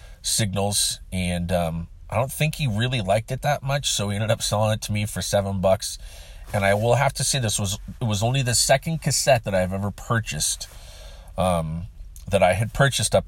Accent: American